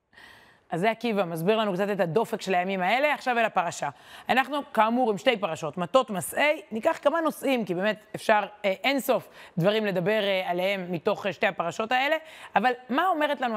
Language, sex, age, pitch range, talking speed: Hebrew, female, 20-39, 185-250 Hz, 180 wpm